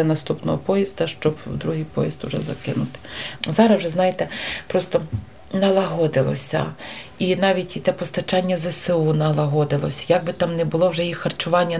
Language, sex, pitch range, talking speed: Ukrainian, female, 155-190 Hz, 135 wpm